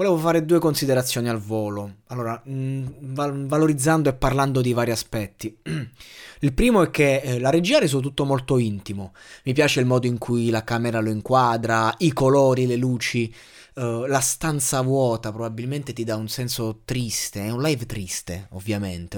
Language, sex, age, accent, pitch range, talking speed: Italian, male, 20-39, native, 110-140 Hz, 175 wpm